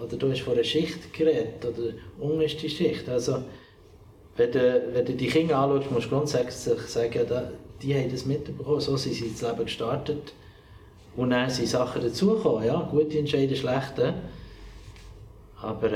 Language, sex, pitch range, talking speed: German, male, 115-155 Hz, 160 wpm